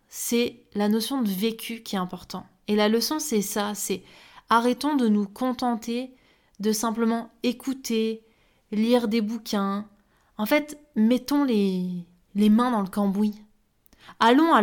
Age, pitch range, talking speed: 20-39, 205-245 Hz, 145 wpm